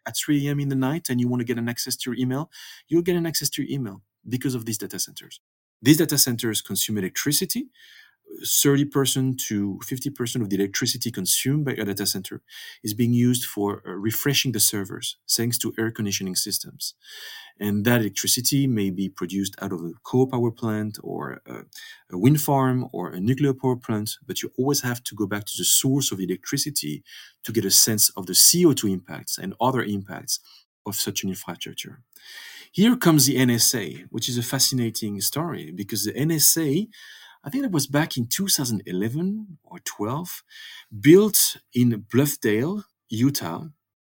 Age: 40-59